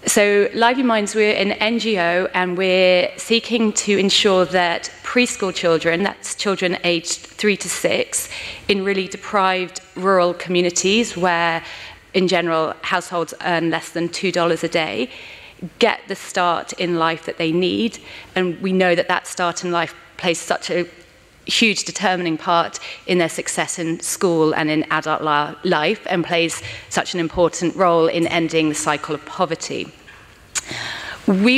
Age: 30-49